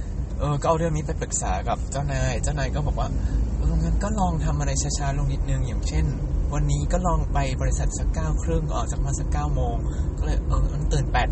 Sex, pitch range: male, 70-80 Hz